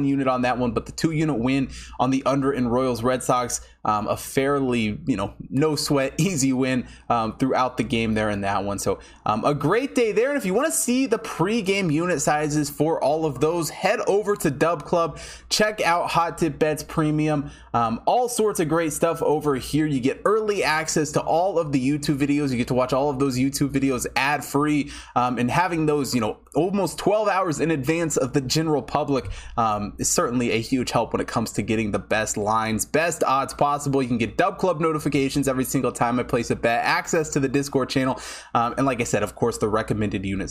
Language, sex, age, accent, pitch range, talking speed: English, male, 20-39, American, 120-165 Hz, 225 wpm